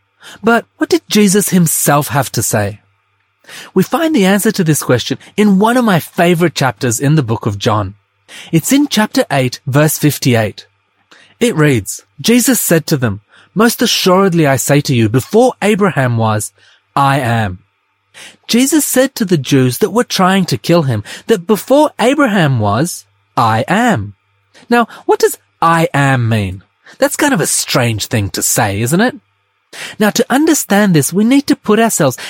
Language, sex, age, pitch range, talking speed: English, male, 30-49, 125-210 Hz, 170 wpm